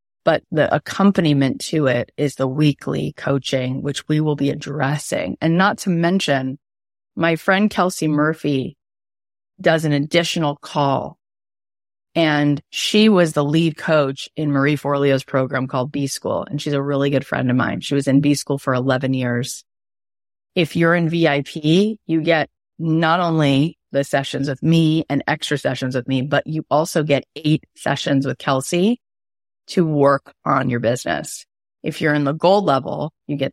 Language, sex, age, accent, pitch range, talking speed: English, female, 30-49, American, 130-160 Hz, 165 wpm